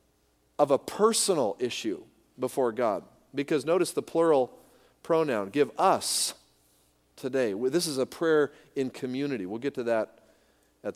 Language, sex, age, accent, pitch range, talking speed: English, male, 40-59, American, 135-195 Hz, 135 wpm